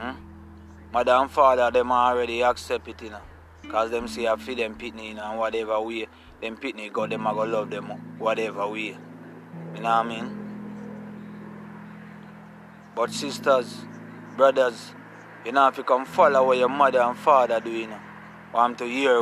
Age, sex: 20-39, male